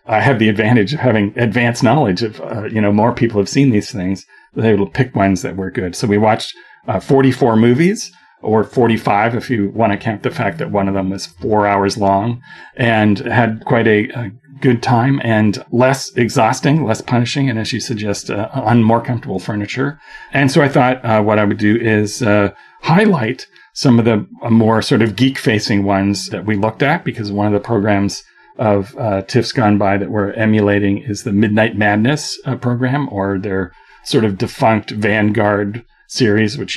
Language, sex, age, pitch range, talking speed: English, male, 40-59, 105-130 Hz, 195 wpm